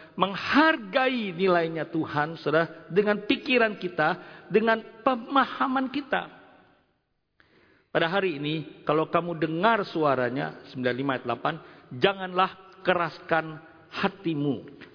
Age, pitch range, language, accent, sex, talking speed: 50-69, 165-245 Hz, Indonesian, native, male, 85 wpm